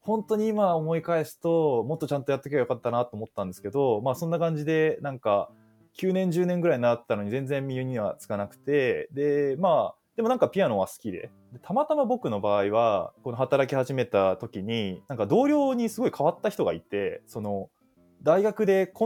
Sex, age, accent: male, 20-39, native